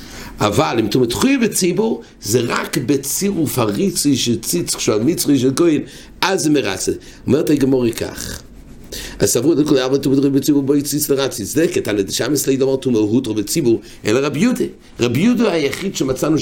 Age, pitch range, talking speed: 50-69, 110-150 Hz, 120 wpm